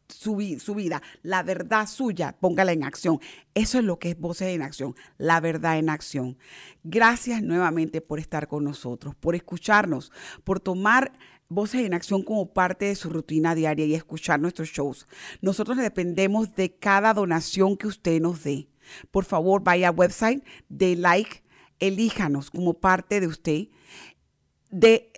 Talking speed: 155 wpm